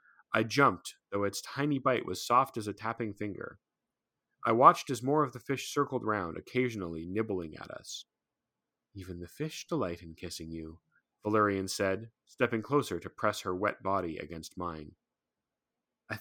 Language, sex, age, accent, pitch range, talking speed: English, male, 30-49, American, 90-130 Hz, 165 wpm